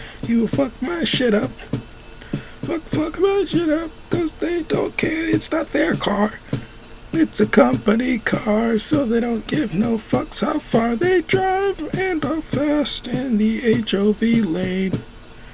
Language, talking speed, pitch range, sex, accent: English, 150 wpm, 145-235 Hz, male, American